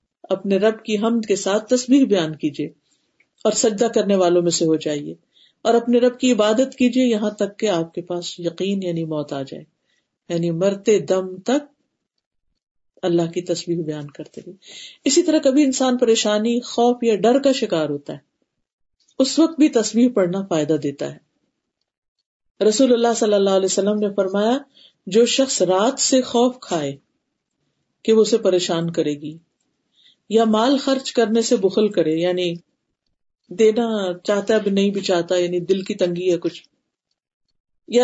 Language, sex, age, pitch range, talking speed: Urdu, female, 50-69, 170-230 Hz, 165 wpm